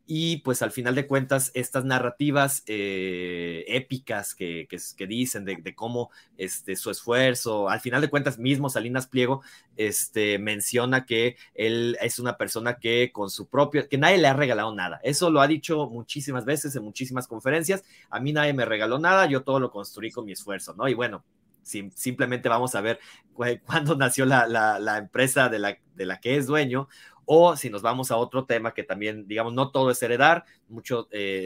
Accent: Mexican